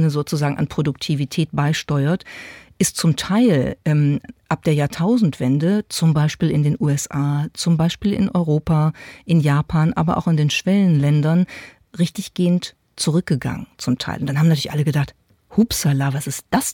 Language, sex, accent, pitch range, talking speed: German, female, German, 150-175 Hz, 145 wpm